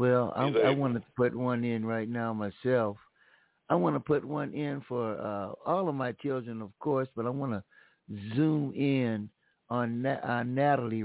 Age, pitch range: 60-79, 110-130 Hz